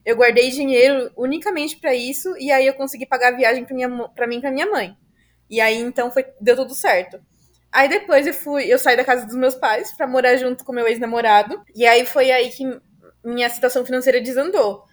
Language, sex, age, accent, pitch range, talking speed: Portuguese, female, 20-39, Brazilian, 240-275 Hz, 215 wpm